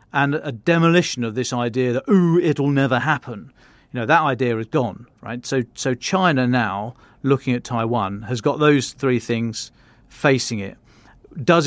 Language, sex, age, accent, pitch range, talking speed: English, male, 40-59, British, 115-145 Hz, 170 wpm